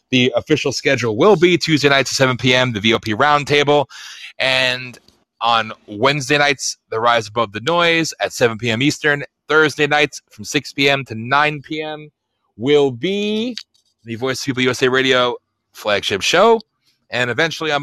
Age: 30-49